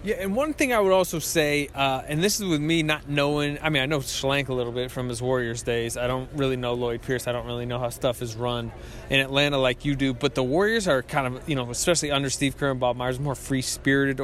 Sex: male